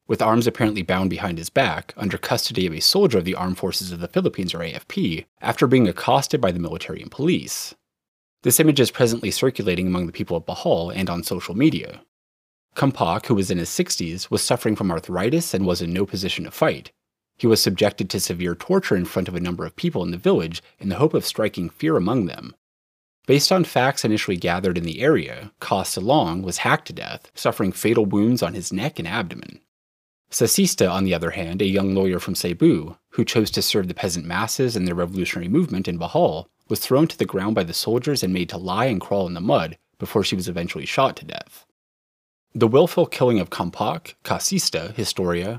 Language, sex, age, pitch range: English, male, 30-49, 85-115 Hz